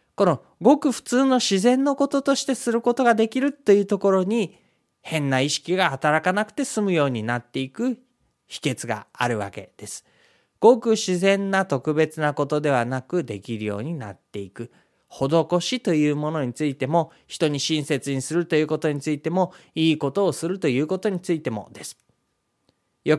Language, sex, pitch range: Japanese, male, 140-205 Hz